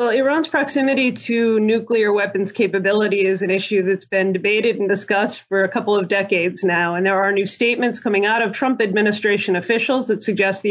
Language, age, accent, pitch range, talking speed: English, 30-49, American, 190-225 Hz, 195 wpm